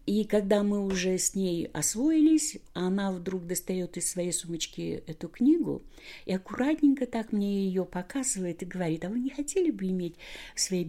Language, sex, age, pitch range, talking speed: Russian, female, 50-69, 155-210 Hz, 170 wpm